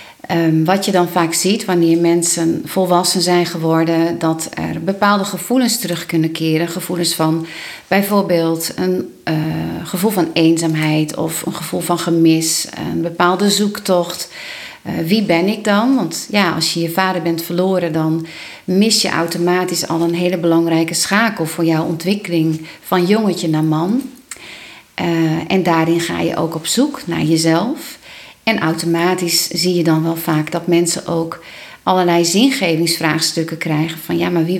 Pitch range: 165-185 Hz